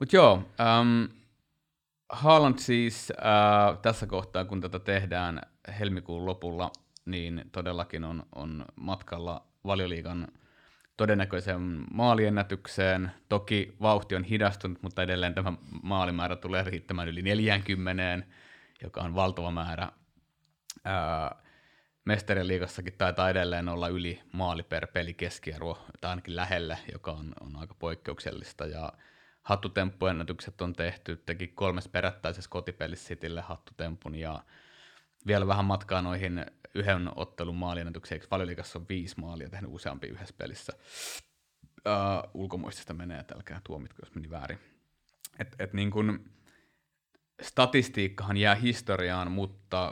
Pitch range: 85-100 Hz